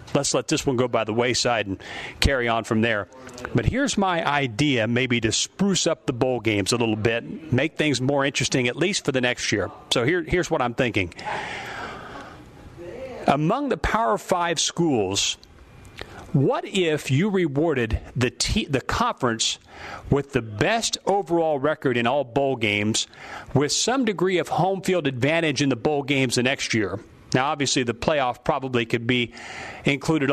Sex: male